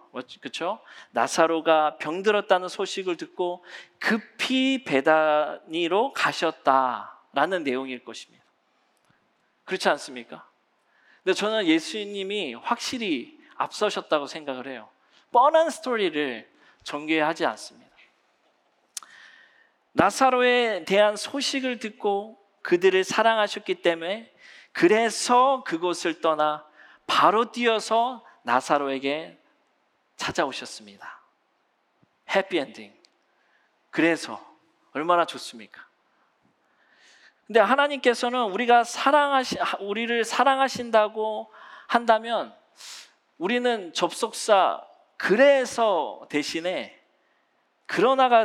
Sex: male